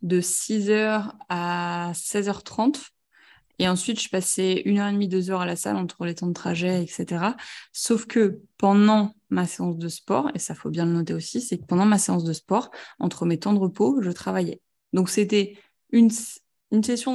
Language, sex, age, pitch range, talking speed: French, female, 20-39, 180-220 Hz, 195 wpm